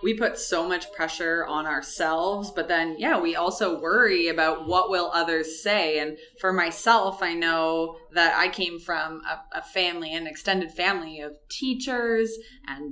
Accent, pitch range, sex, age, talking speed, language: American, 160-225 Hz, female, 20-39, 165 wpm, English